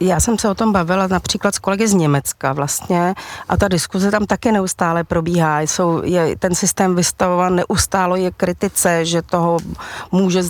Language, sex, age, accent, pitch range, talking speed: Czech, female, 40-59, native, 180-200 Hz, 170 wpm